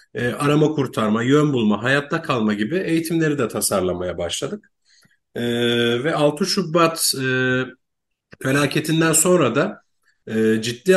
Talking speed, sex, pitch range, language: 120 wpm, male, 120-155 Hz, Turkish